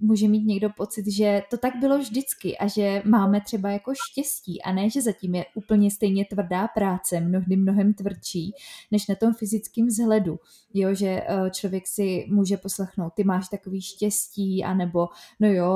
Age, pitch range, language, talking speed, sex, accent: 20-39, 205-230 Hz, Czech, 170 wpm, female, native